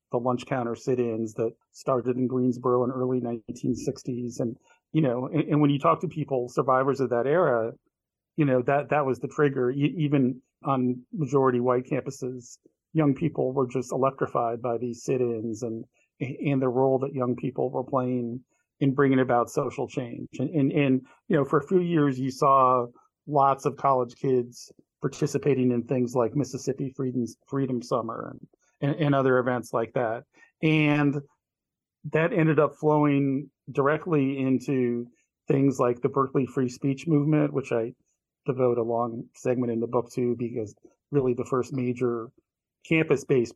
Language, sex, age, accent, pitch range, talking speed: English, male, 40-59, American, 125-145 Hz, 165 wpm